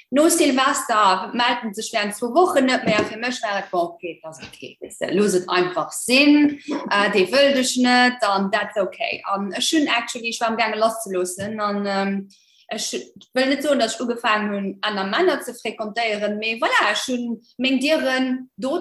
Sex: female